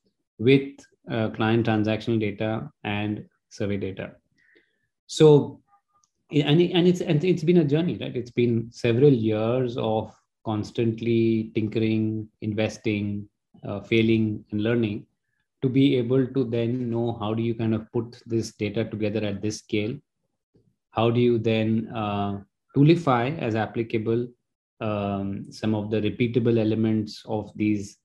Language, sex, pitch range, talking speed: English, male, 110-125 Hz, 140 wpm